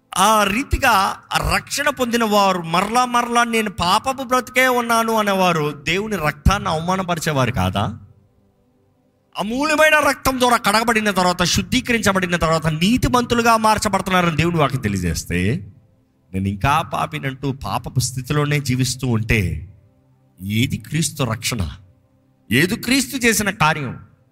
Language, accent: Telugu, native